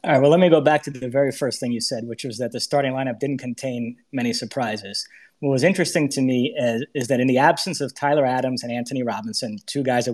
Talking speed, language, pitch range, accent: 260 wpm, English, 130-155 Hz, American